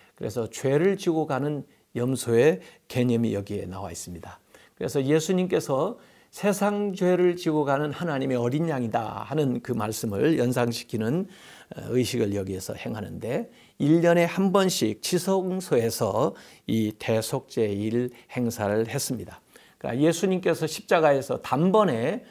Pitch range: 115-180 Hz